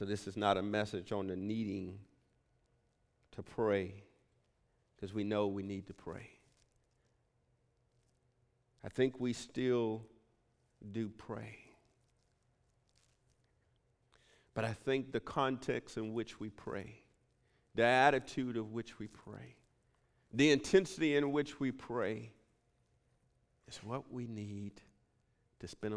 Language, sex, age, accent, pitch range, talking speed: English, male, 50-69, American, 105-140 Hz, 120 wpm